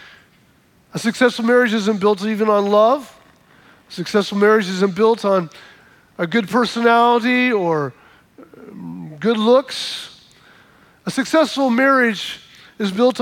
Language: English